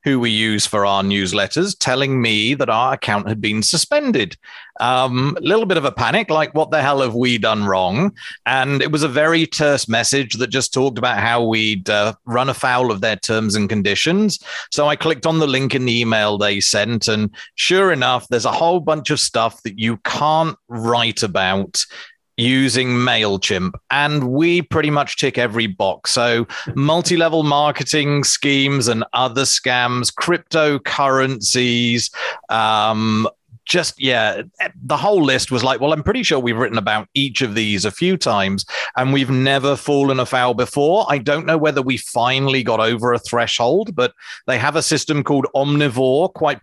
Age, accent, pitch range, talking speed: 40-59, British, 115-145 Hz, 175 wpm